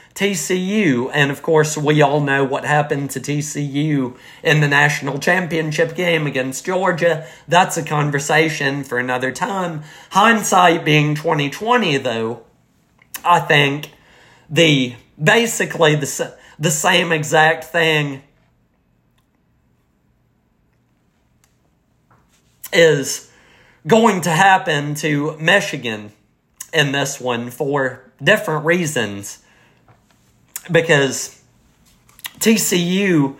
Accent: American